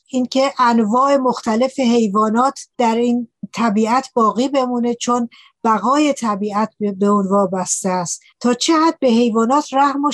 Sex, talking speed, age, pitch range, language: female, 130 wpm, 60-79, 210-255 Hz, Persian